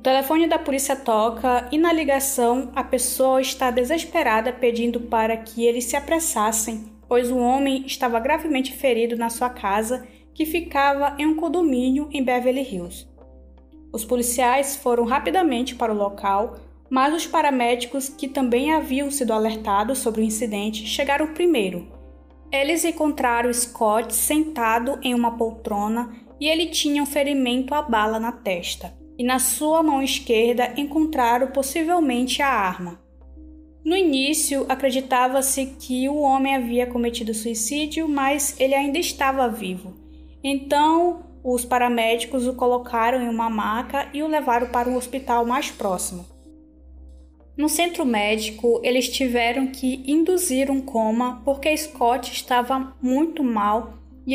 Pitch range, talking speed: 230-280 Hz, 140 wpm